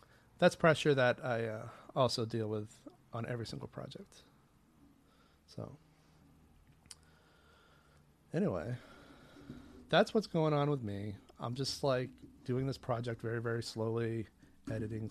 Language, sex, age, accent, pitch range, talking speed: English, male, 30-49, American, 110-130 Hz, 120 wpm